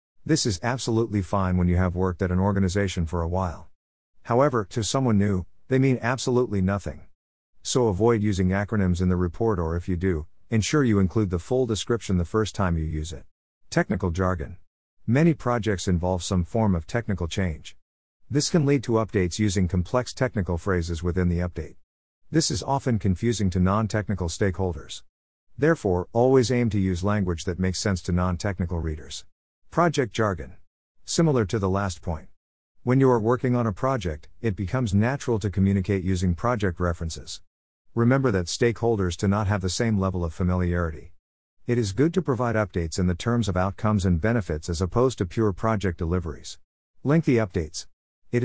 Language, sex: English, male